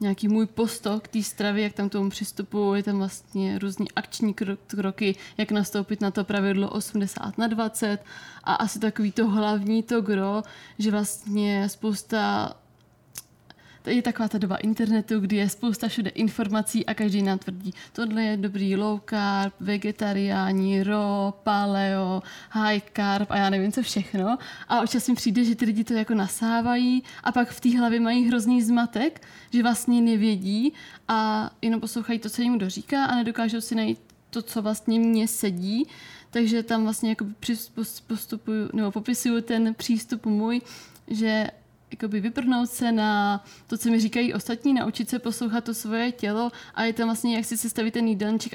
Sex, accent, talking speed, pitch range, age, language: female, native, 165 wpm, 200-230 Hz, 20-39, Czech